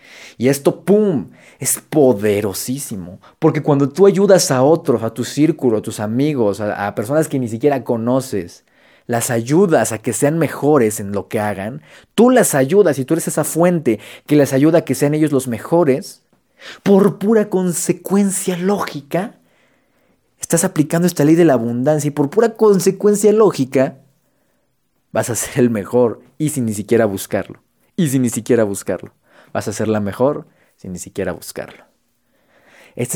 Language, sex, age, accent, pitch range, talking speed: Spanish, male, 30-49, Mexican, 120-160 Hz, 165 wpm